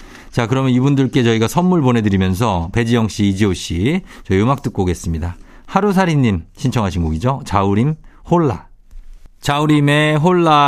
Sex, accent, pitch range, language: male, native, 100-145 Hz, Korean